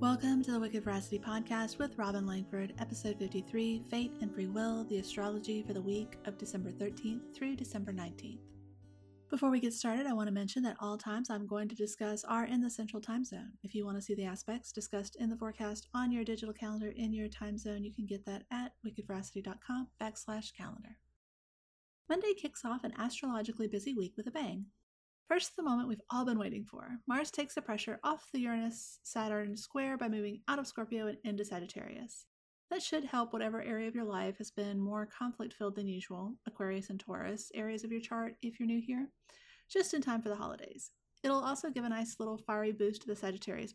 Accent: American